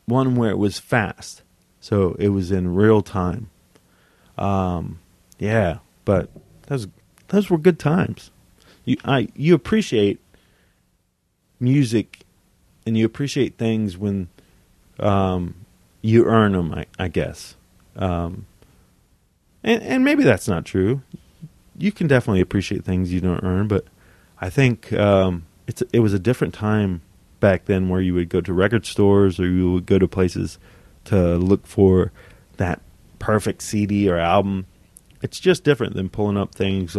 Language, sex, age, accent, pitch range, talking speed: English, male, 30-49, American, 90-105 Hz, 150 wpm